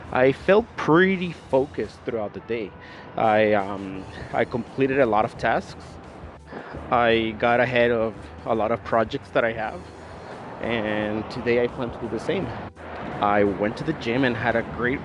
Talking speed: 170 wpm